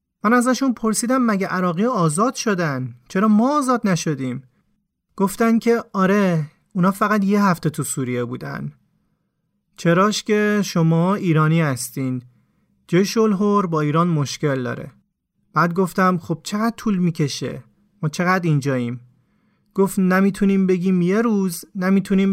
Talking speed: 125 wpm